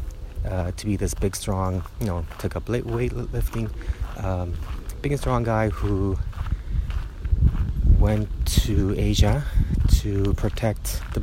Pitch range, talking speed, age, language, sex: 85-105 Hz, 125 wpm, 30-49, English, male